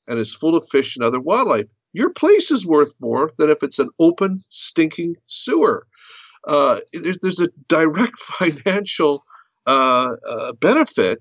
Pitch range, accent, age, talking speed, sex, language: 125-195 Hz, American, 50-69, 155 wpm, male, English